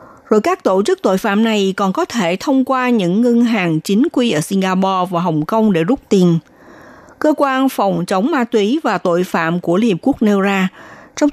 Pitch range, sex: 180-255 Hz, female